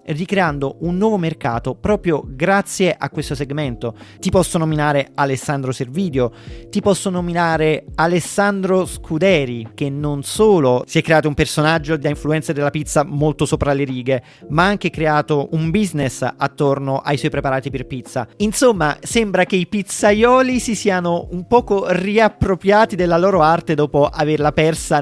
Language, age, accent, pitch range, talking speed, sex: Italian, 30-49, native, 135-170 Hz, 150 wpm, male